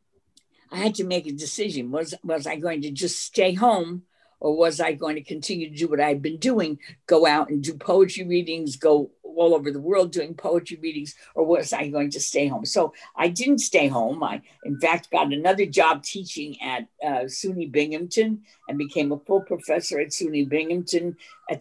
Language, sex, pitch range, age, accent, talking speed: English, female, 145-180 Hz, 60-79, American, 200 wpm